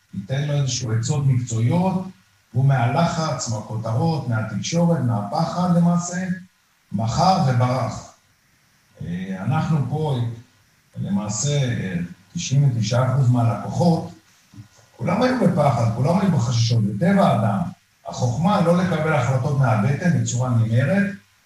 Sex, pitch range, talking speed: male, 120-170 Hz, 90 wpm